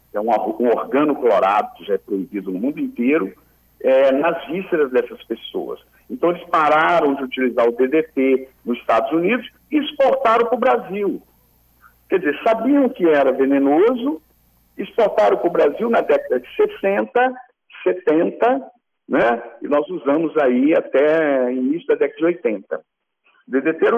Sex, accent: male, Brazilian